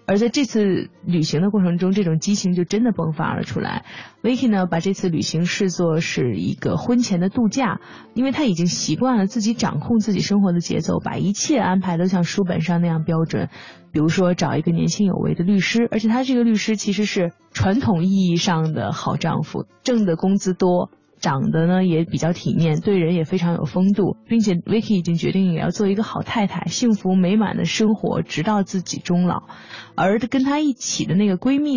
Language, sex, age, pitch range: Chinese, female, 20-39, 170-215 Hz